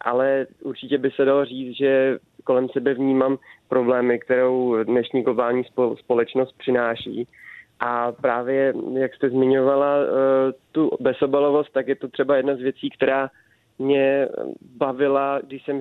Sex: male